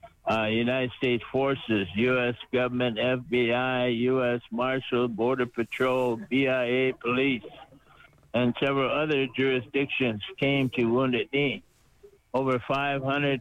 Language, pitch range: English, 115-135 Hz